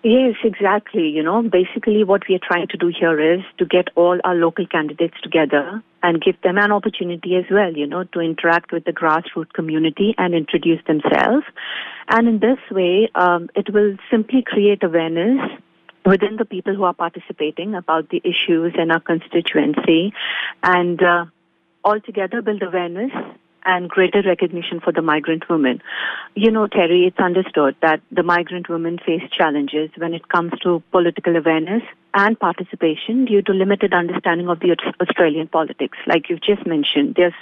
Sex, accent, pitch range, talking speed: female, Indian, 170-200 Hz, 170 wpm